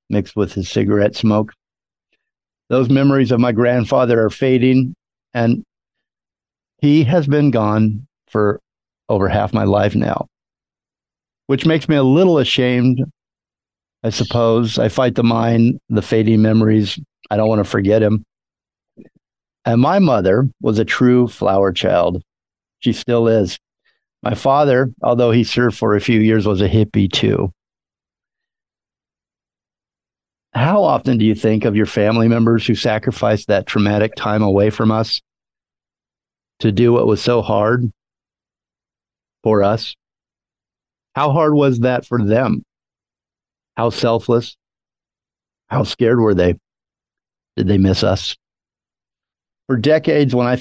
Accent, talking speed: American, 135 wpm